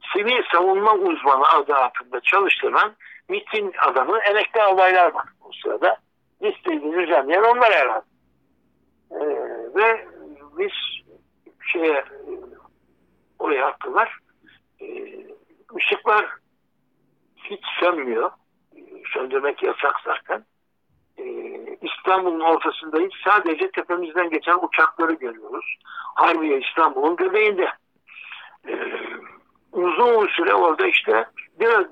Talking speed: 90 wpm